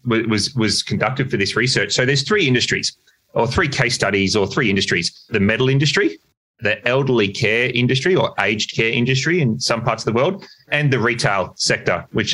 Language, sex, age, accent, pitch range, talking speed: English, male, 30-49, Australian, 100-135 Hz, 190 wpm